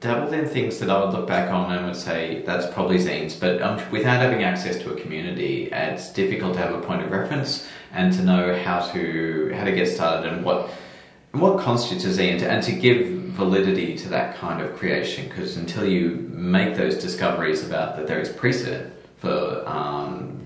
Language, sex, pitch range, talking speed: English, male, 75-95 Hz, 205 wpm